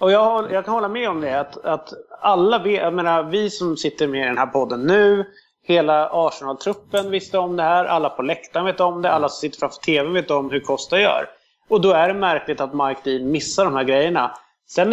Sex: male